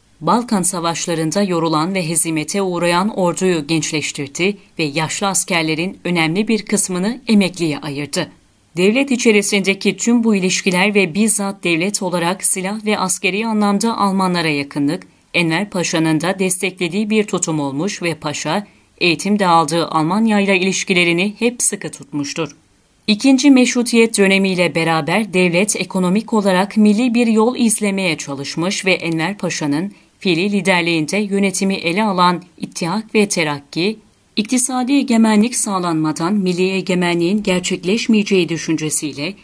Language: Turkish